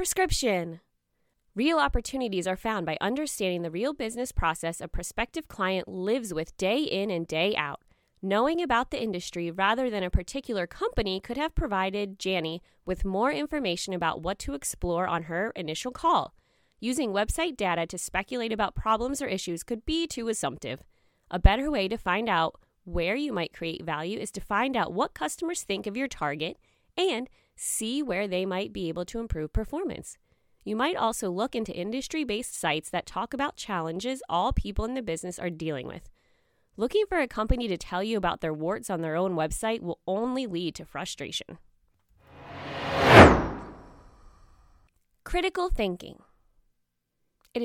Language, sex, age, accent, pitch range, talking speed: English, female, 20-39, American, 175-250 Hz, 165 wpm